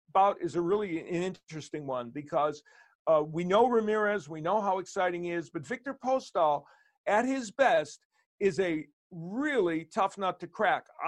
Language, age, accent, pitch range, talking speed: English, 50-69, American, 160-200 Hz, 170 wpm